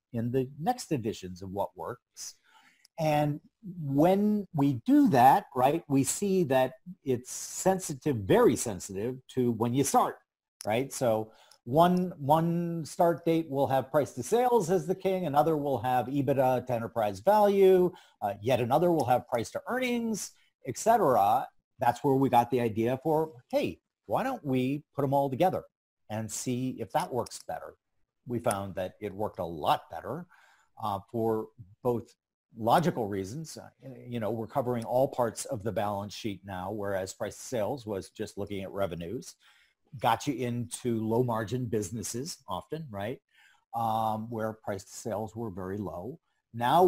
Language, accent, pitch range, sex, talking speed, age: English, American, 105-145 Hz, male, 160 wpm, 50-69